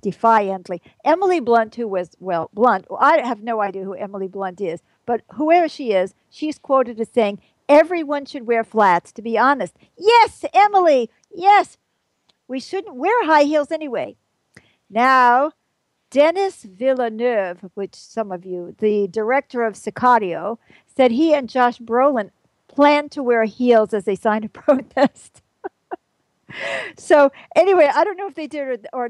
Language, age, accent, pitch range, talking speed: English, 50-69, American, 225-315 Hz, 160 wpm